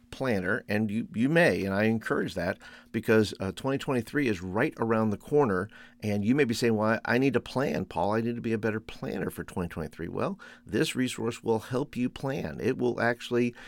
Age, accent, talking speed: 50-69, American, 210 wpm